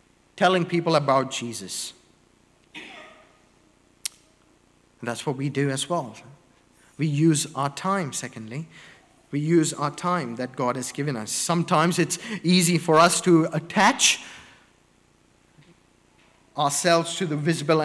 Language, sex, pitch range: English, male, 135-165 Hz